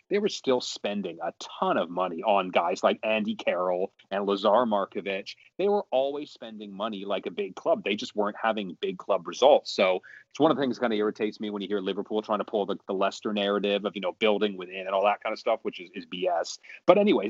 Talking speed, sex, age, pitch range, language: 245 wpm, male, 30-49, 95-120 Hz, English